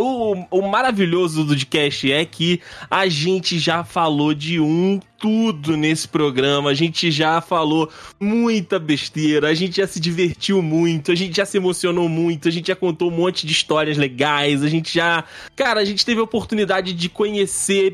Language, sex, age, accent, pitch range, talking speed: Portuguese, male, 20-39, Brazilian, 140-185 Hz, 180 wpm